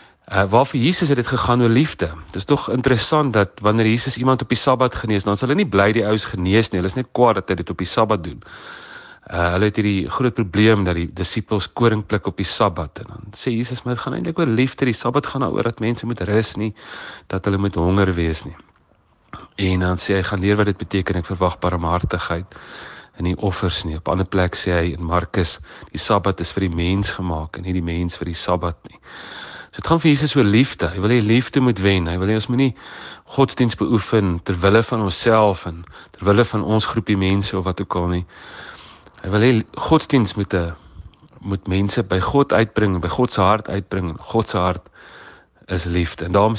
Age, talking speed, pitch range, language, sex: 40-59, 220 wpm, 90-115 Hz, English, male